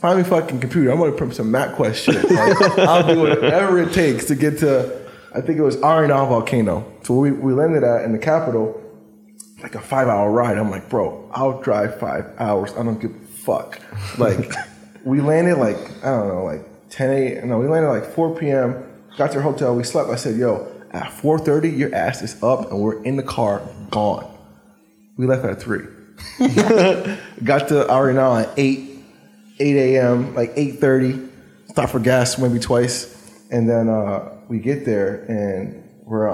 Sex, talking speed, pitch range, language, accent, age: male, 190 wpm, 110-150 Hz, English, American, 20-39